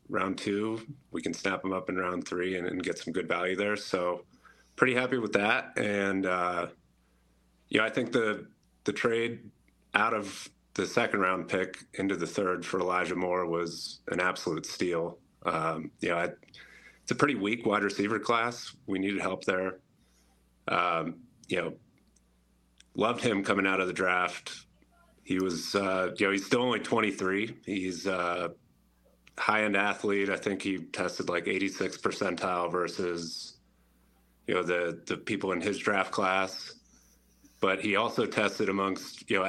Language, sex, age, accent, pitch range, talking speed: English, male, 30-49, American, 85-105 Hz, 170 wpm